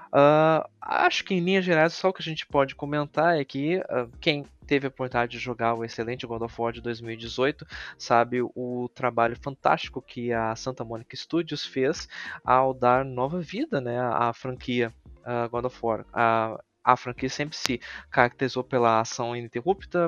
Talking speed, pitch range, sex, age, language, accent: 175 wpm, 120-150 Hz, male, 20-39, Portuguese, Brazilian